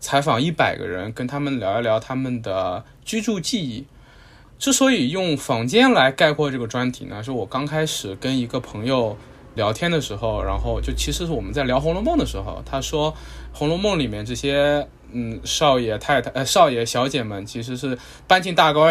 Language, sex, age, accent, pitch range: Chinese, male, 20-39, native, 115-155 Hz